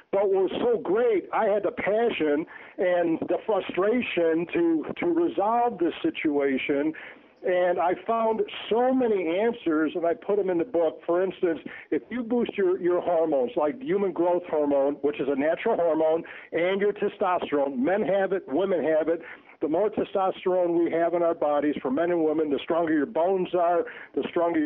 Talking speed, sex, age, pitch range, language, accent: 185 wpm, male, 60-79, 165-230 Hz, English, American